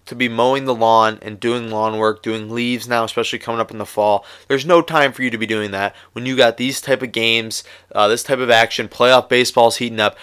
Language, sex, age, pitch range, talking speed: English, male, 20-39, 110-140 Hz, 250 wpm